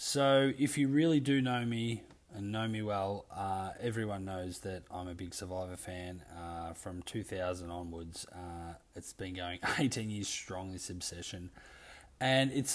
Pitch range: 95-115 Hz